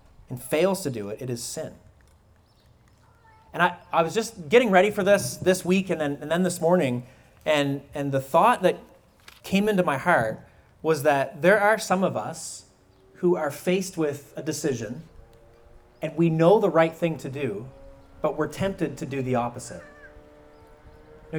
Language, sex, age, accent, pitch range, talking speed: English, male, 30-49, American, 130-185 Hz, 170 wpm